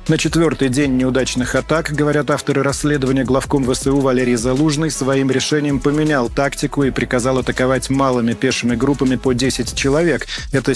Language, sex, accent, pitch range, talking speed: Russian, male, native, 120-145 Hz, 145 wpm